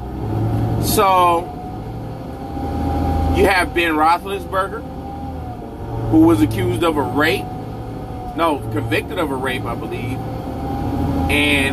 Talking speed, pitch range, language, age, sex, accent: 95 wpm, 100-145 Hz, English, 30-49, male, American